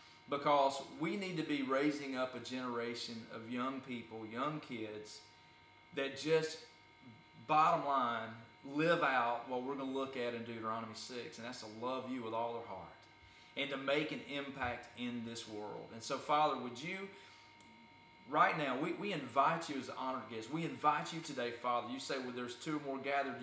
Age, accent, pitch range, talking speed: 30-49, American, 120-150 Hz, 185 wpm